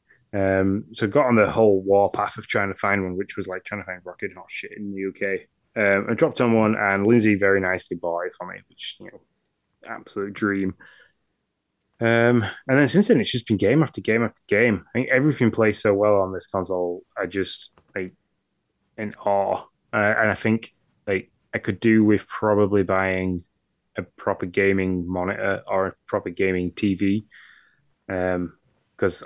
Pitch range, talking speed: 90-105 Hz, 195 wpm